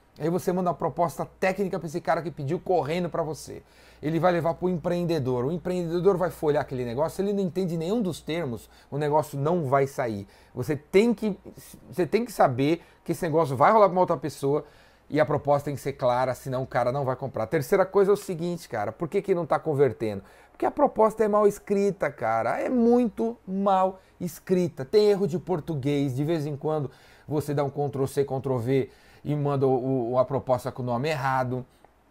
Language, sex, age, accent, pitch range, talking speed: Portuguese, male, 30-49, Brazilian, 135-185 Hz, 205 wpm